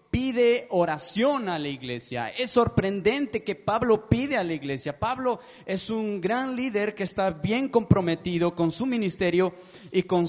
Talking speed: 155 wpm